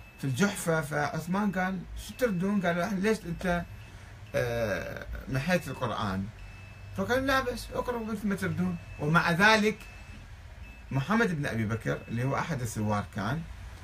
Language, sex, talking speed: Arabic, male, 130 wpm